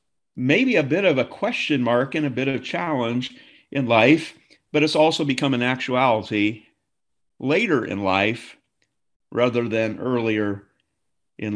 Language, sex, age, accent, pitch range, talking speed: English, male, 50-69, American, 105-130 Hz, 140 wpm